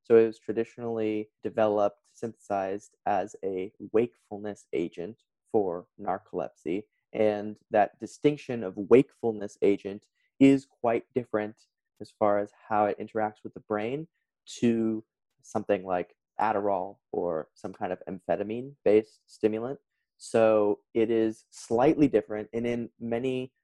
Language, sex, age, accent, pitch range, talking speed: English, male, 20-39, American, 105-115 Hz, 120 wpm